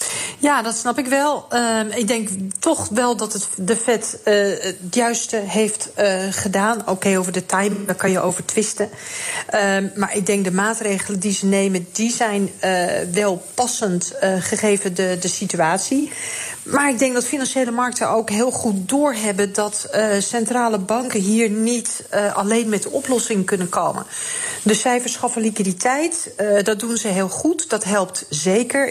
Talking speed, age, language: 170 wpm, 40-59, Dutch